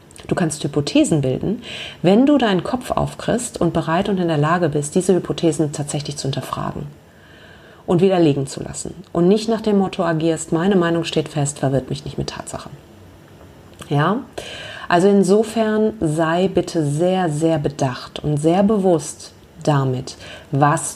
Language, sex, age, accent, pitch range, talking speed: German, female, 30-49, German, 145-180 Hz, 150 wpm